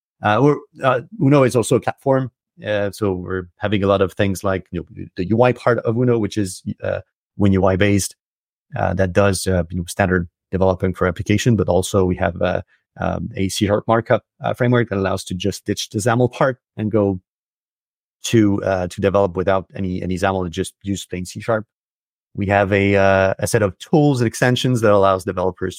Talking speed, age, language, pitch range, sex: 205 wpm, 30-49, English, 95-115 Hz, male